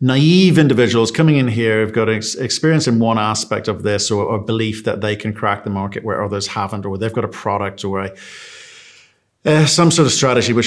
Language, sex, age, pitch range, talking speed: English, male, 50-69, 110-145 Hz, 210 wpm